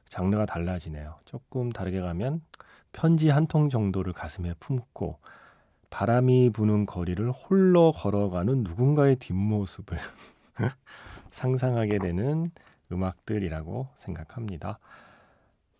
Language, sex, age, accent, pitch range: Korean, male, 40-59, native, 90-135 Hz